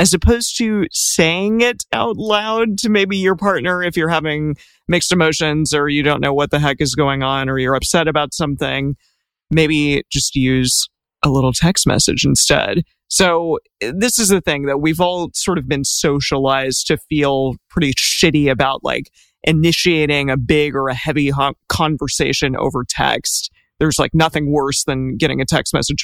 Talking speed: 175 wpm